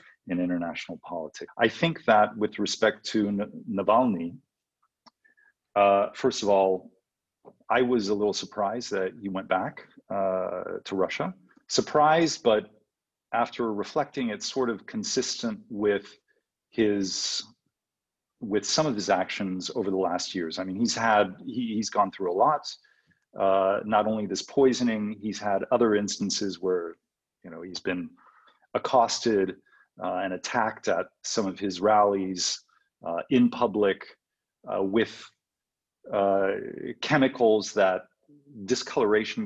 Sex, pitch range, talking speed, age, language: male, 95-130 Hz, 135 wpm, 40-59, English